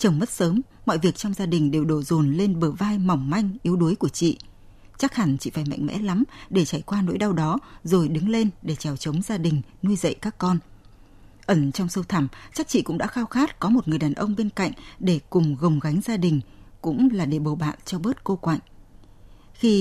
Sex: female